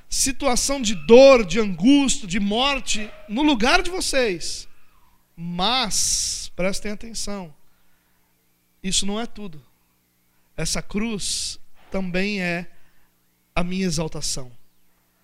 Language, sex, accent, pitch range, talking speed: Portuguese, male, Brazilian, 130-210 Hz, 100 wpm